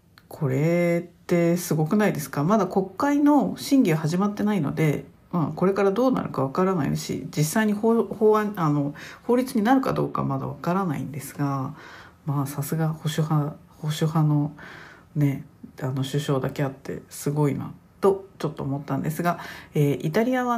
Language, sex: Japanese, female